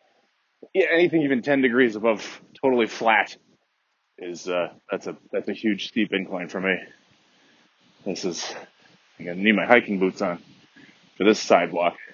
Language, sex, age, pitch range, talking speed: English, male, 20-39, 125-195 Hz, 165 wpm